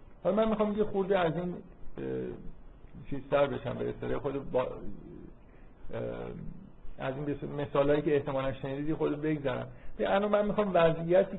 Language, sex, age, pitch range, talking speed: Persian, male, 50-69, 125-155 Hz, 135 wpm